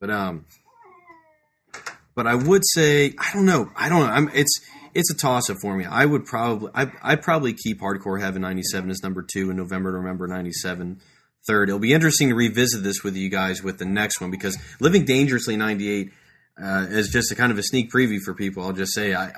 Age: 30-49